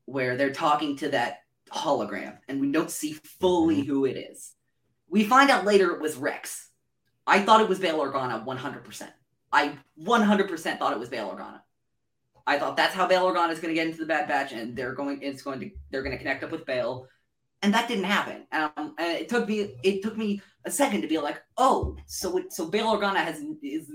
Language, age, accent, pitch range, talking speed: English, 20-39, American, 150-210 Hz, 220 wpm